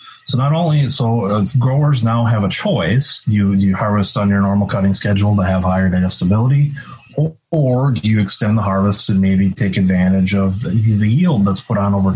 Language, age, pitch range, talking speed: English, 30-49, 100-120 Hz, 200 wpm